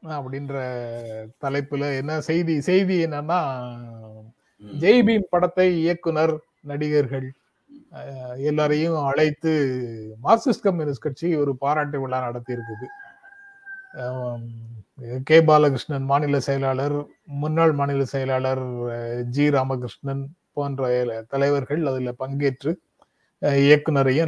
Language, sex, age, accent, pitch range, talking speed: Tamil, male, 30-49, native, 135-170 Hz, 85 wpm